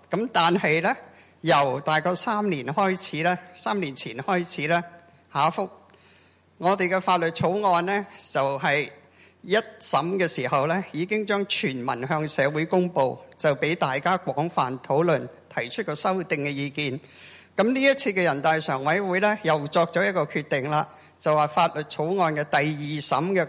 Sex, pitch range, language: male, 145-190 Hz, Chinese